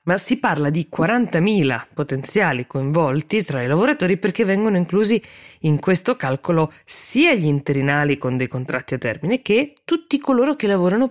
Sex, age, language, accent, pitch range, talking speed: female, 20-39, Italian, native, 135-175 Hz, 155 wpm